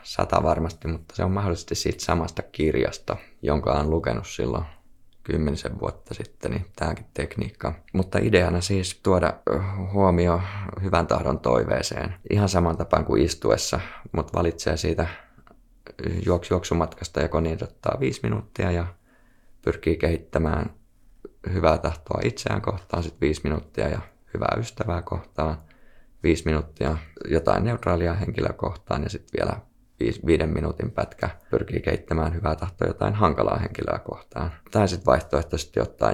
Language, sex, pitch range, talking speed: Finnish, male, 80-100 Hz, 130 wpm